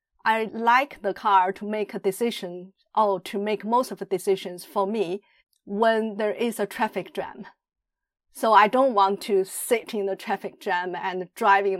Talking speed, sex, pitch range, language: 180 wpm, female, 190-220 Hz, English